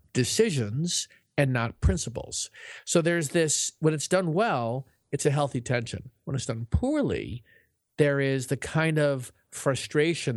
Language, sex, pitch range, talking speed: English, male, 110-145 Hz, 145 wpm